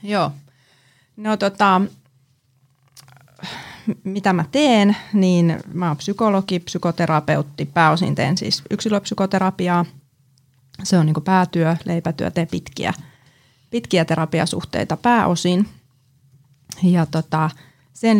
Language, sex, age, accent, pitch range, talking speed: Finnish, female, 30-49, native, 140-195 Hz, 90 wpm